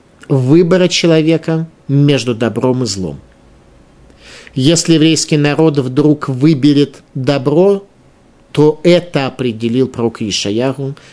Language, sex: Russian, male